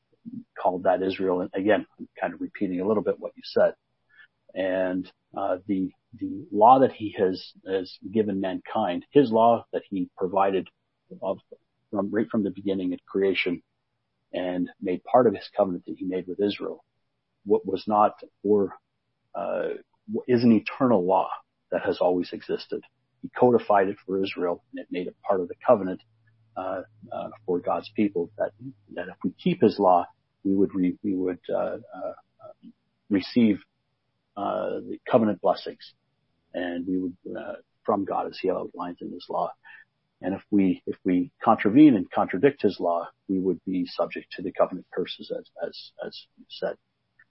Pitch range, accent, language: 90-125 Hz, American, English